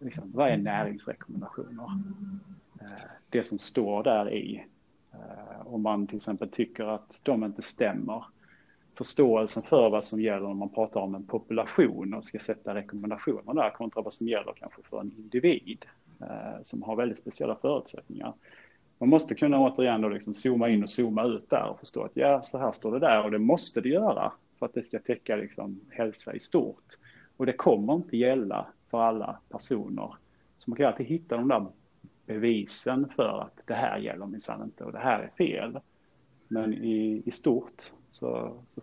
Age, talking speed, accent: 30-49, 180 wpm, Norwegian